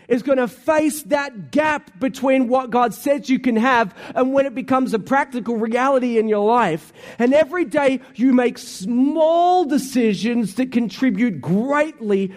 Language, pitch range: English, 195-265 Hz